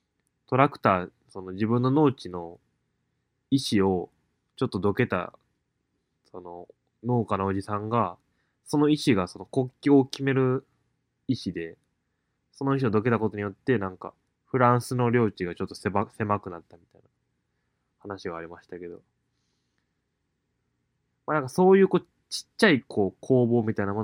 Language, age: Japanese, 20-39